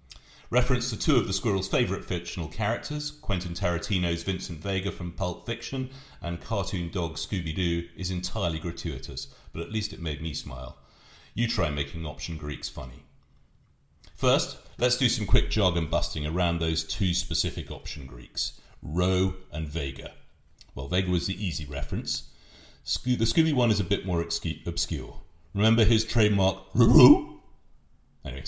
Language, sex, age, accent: English, male, 40-59, British